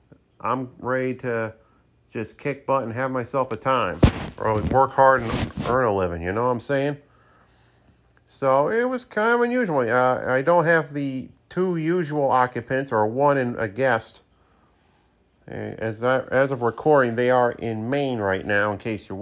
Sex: male